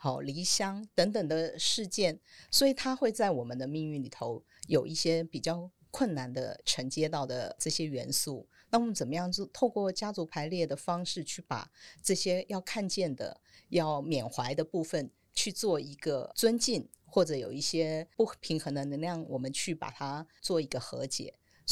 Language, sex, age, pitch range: Chinese, female, 50-69, 140-195 Hz